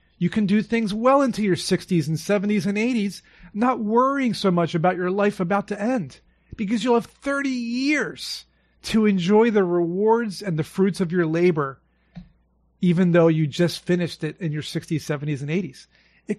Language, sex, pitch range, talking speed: English, male, 160-205 Hz, 185 wpm